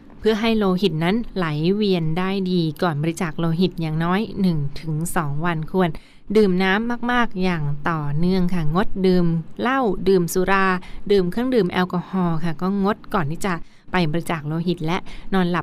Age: 20-39